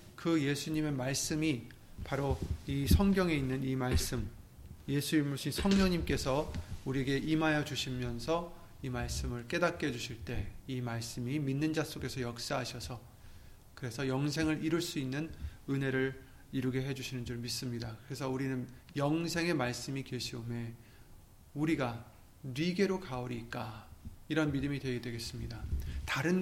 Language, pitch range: Korean, 120-155 Hz